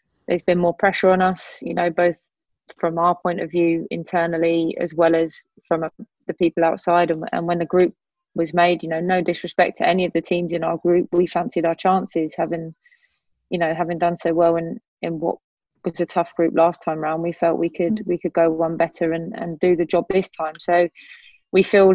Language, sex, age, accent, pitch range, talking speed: English, female, 20-39, British, 165-180 Hz, 225 wpm